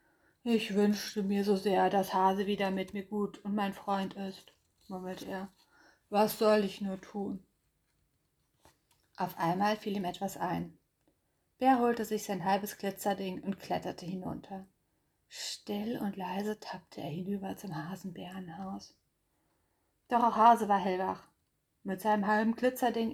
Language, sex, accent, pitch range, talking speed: German, female, German, 195-240 Hz, 140 wpm